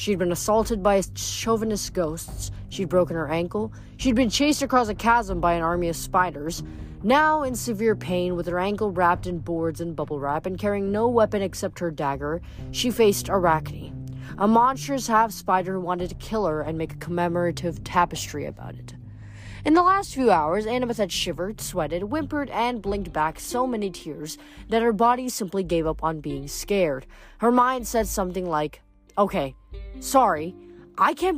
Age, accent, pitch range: 20-39, American, 165-230 Hz